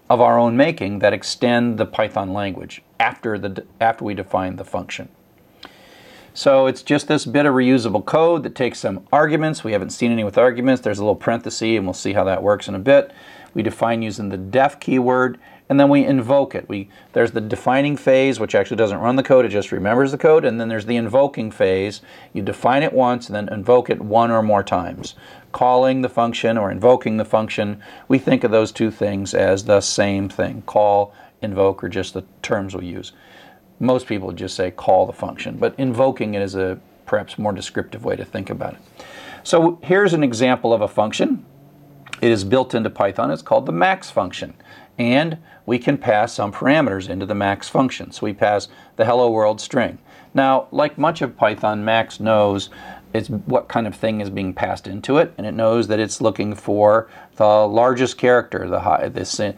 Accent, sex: American, male